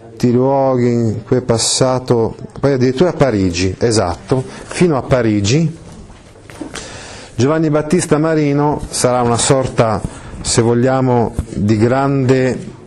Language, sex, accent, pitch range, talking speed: Italian, male, native, 100-135 Hz, 110 wpm